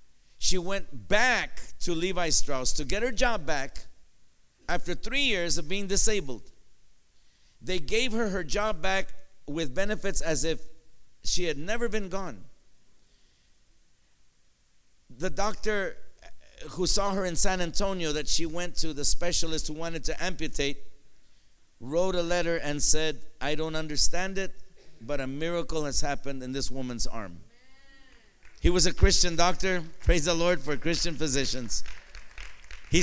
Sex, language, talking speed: male, English, 145 wpm